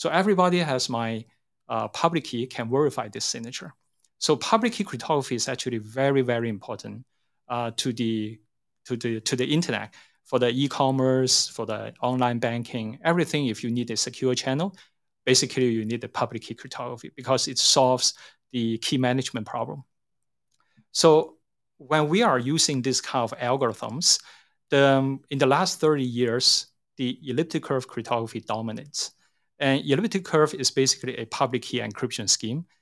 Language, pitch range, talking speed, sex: English, 115-140 Hz, 150 wpm, male